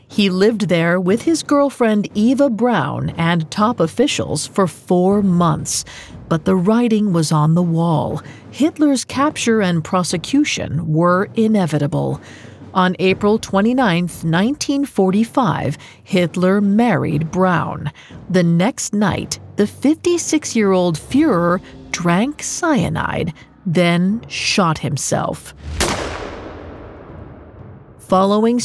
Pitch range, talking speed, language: 170-225 Hz, 95 wpm, English